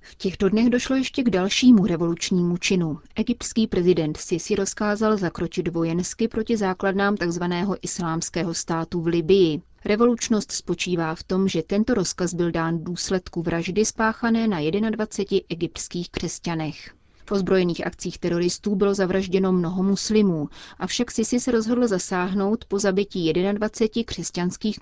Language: Czech